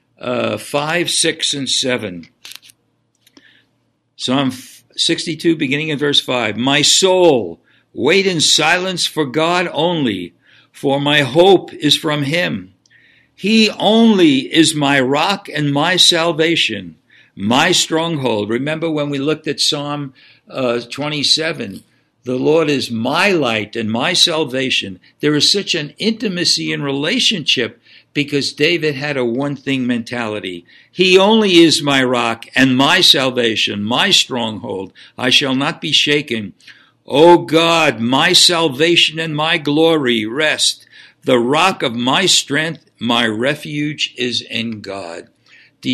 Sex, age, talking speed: male, 60-79, 130 wpm